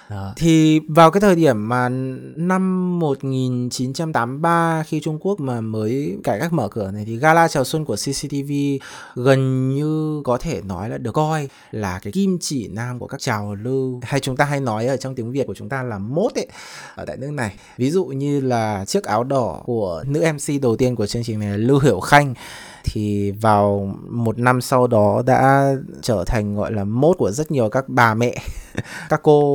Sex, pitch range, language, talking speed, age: male, 115-155 Hz, Vietnamese, 205 wpm, 20-39